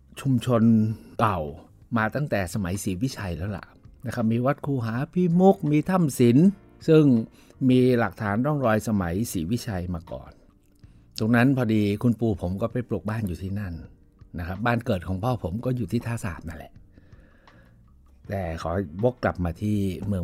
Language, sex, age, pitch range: Thai, male, 60-79, 100-140 Hz